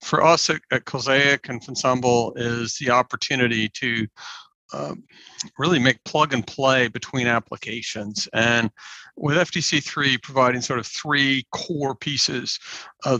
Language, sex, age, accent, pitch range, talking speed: English, male, 50-69, American, 120-140 Hz, 130 wpm